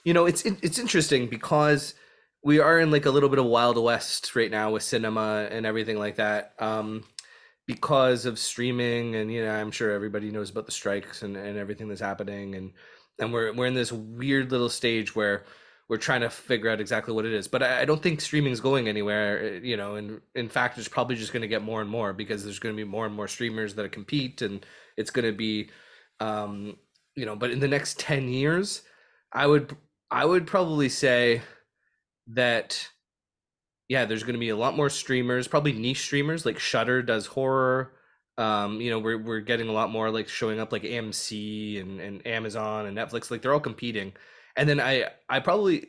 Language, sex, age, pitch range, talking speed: English, male, 20-39, 110-135 Hz, 210 wpm